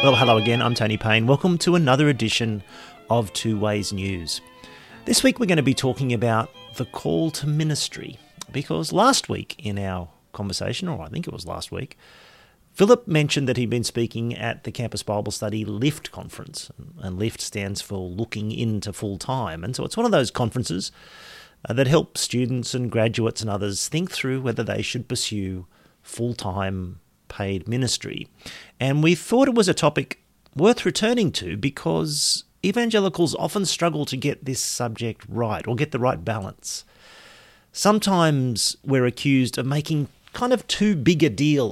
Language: English